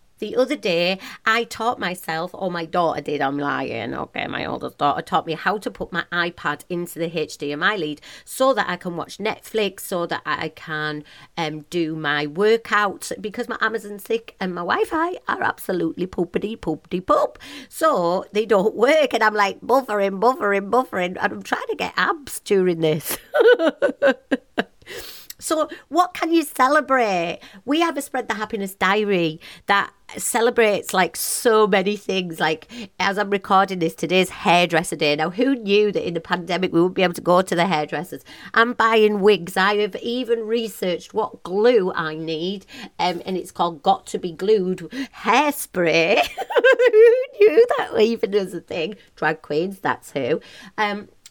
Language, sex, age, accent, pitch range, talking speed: English, female, 40-59, British, 175-240 Hz, 170 wpm